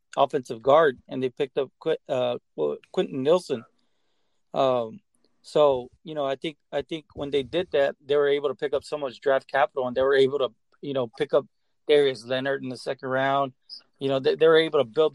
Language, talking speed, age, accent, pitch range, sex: English, 220 wpm, 30-49, American, 130-155 Hz, male